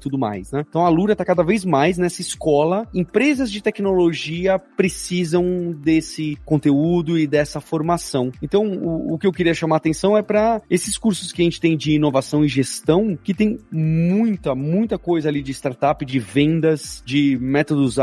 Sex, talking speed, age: male, 180 wpm, 30-49